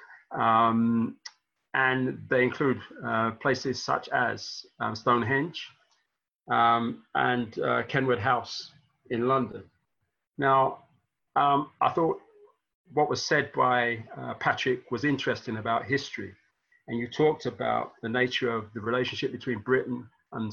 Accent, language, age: British, English, 40-59